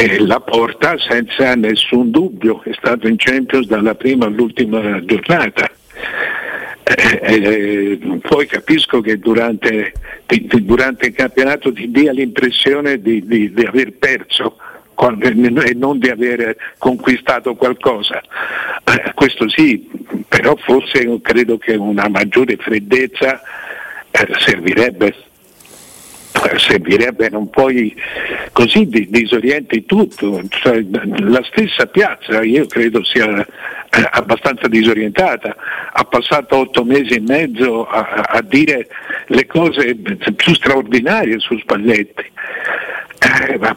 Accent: native